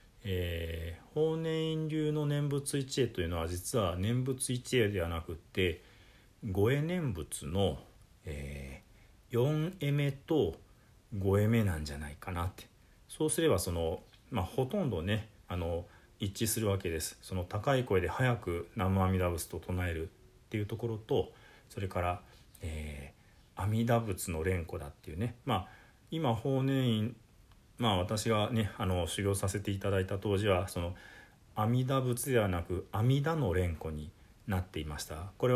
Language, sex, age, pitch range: Japanese, male, 40-59, 90-125 Hz